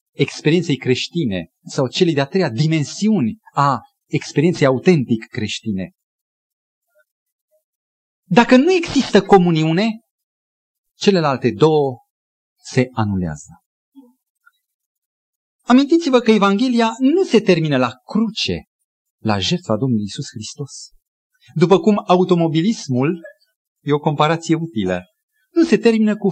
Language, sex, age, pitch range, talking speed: Romanian, male, 40-59, 130-225 Hz, 100 wpm